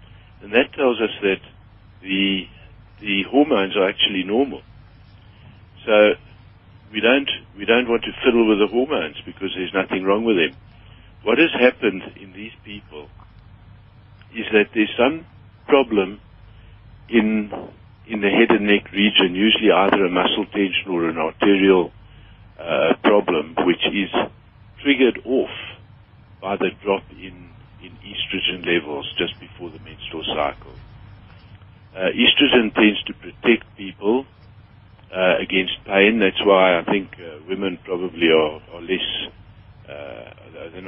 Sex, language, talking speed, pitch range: male, English, 135 wpm, 95-110 Hz